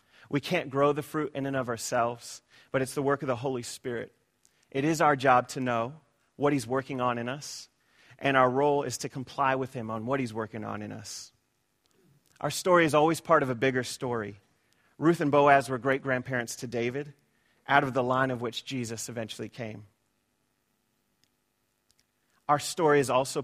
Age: 30-49